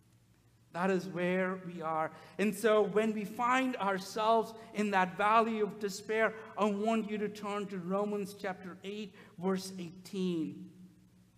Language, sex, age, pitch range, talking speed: English, male, 50-69, 170-210 Hz, 140 wpm